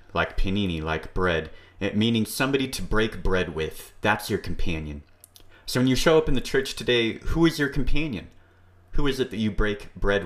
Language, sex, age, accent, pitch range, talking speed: English, male, 30-49, American, 90-110 Hz, 195 wpm